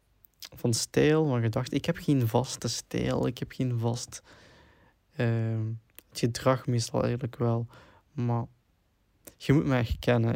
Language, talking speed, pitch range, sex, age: Dutch, 140 wpm, 115-125 Hz, male, 20-39